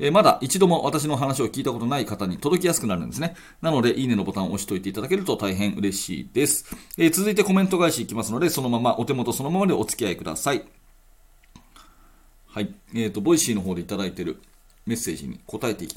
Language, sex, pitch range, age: Japanese, male, 110-165 Hz, 40-59